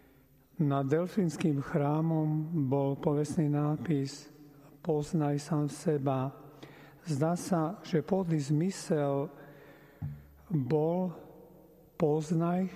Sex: male